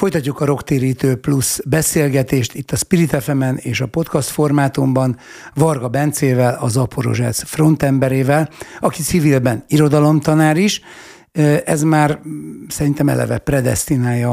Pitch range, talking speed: 125-150 Hz, 115 wpm